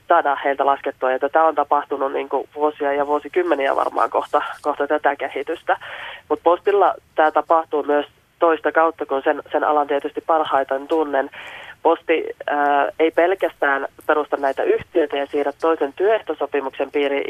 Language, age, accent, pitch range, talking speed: Finnish, 20-39, native, 140-160 Hz, 150 wpm